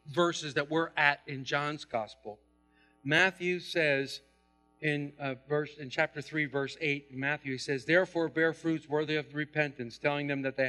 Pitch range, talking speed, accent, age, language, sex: 150-245 Hz, 165 wpm, American, 50-69, English, male